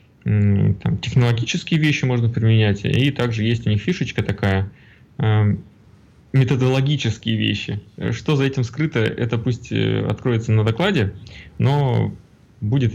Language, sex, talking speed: Russian, male, 115 wpm